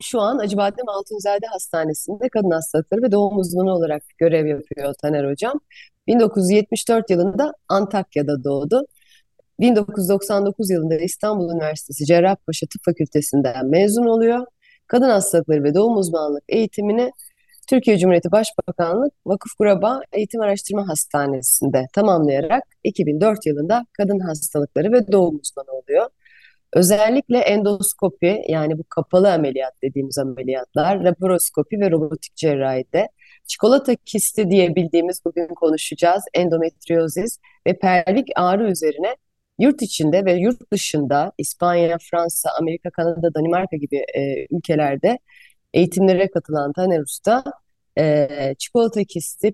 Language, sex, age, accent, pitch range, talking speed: Turkish, female, 30-49, native, 160-210 Hz, 115 wpm